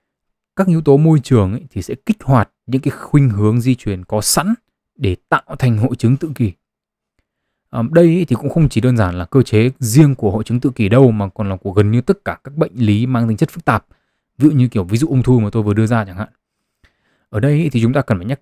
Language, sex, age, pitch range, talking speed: Vietnamese, male, 20-39, 105-140 Hz, 265 wpm